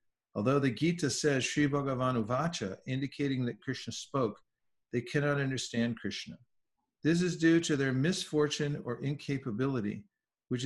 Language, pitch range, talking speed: English, 120-155 Hz, 135 wpm